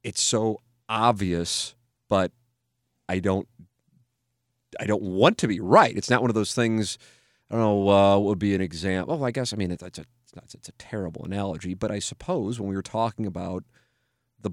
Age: 40-59